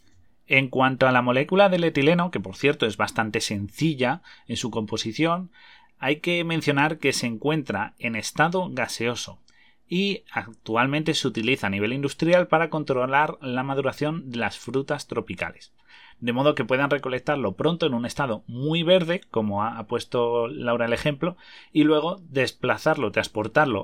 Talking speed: 155 wpm